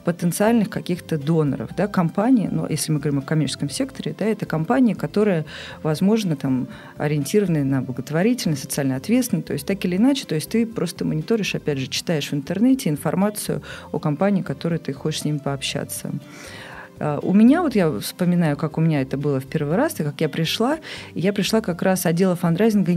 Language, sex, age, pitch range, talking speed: Russian, female, 40-59, 150-195 Hz, 190 wpm